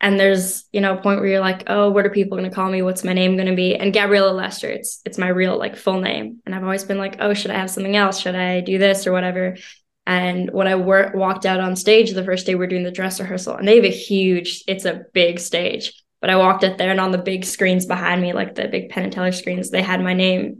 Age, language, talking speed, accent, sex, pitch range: 10-29, English, 290 wpm, American, female, 185-195 Hz